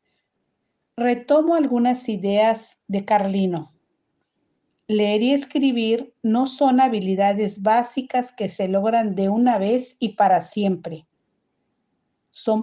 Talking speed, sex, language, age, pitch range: 105 wpm, female, Spanish, 50-69, 195-250 Hz